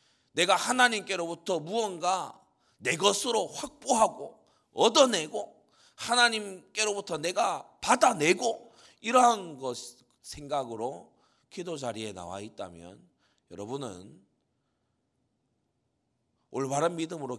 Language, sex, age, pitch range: Korean, male, 40-59, 110-175 Hz